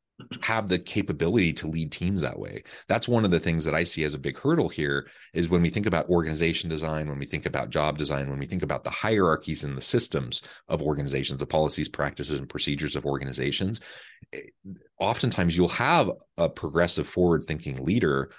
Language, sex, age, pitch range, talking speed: English, male, 30-49, 75-90 Hz, 195 wpm